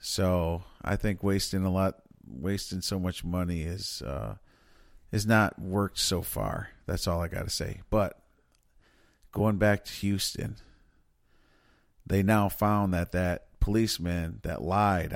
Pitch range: 90-110 Hz